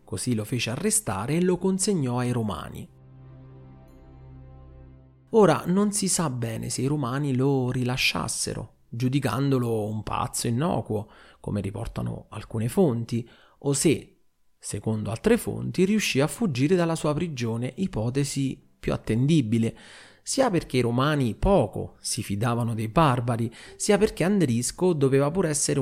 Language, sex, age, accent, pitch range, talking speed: Italian, male, 30-49, native, 110-145 Hz, 130 wpm